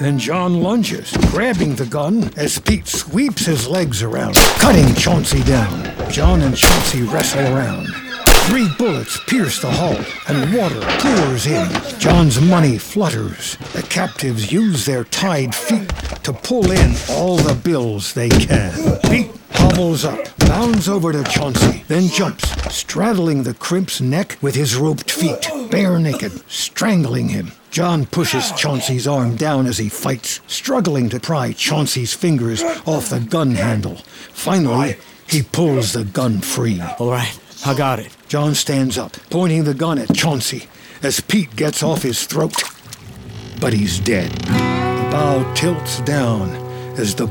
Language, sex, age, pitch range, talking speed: English, male, 60-79, 120-165 Hz, 150 wpm